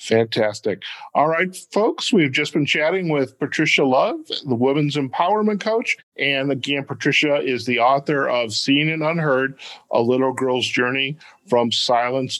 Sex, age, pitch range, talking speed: male, 50-69, 125-160 Hz, 150 wpm